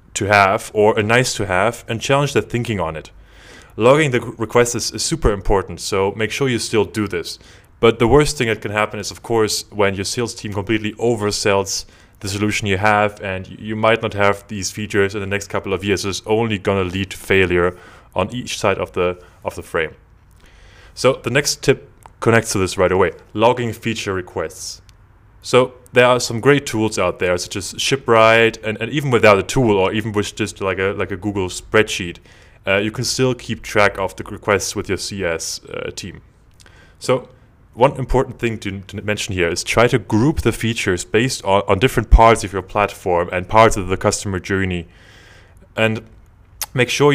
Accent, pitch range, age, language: German, 95-115 Hz, 20-39, English